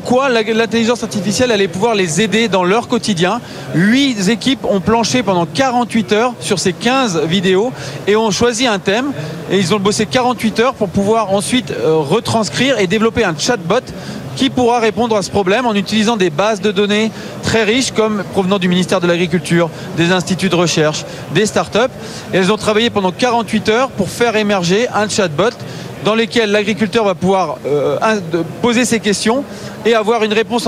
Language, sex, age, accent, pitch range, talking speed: French, male, 30-49, French, 190-230 Hz, 175 wpm